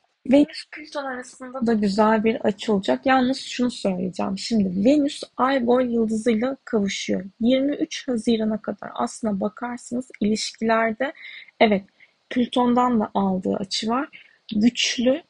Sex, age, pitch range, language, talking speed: female, 20-39, 210-250 Hz, Turkish, 115 wpm